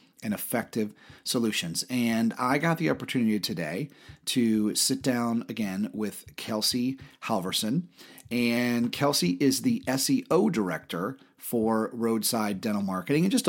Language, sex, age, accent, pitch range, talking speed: English, male, 30-49, American, 115-145 Hz, 125 wpm